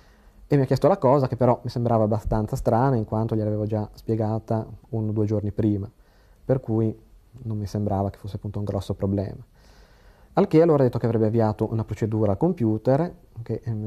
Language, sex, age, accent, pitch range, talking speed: Italian, male, 40-59, native, 105-120 Hz, 205 wpm